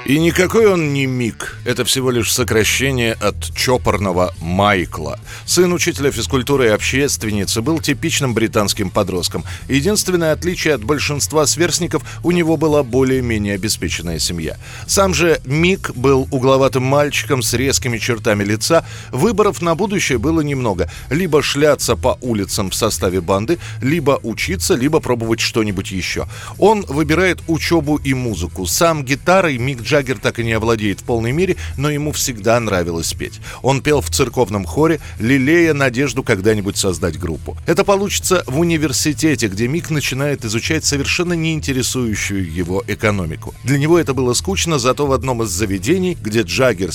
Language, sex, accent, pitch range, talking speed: Russian, male, native, 105-150 Hz, 145 wpm